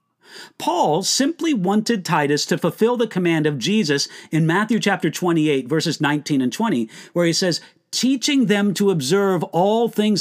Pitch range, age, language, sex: 175-235 Hz, 40-59, English, male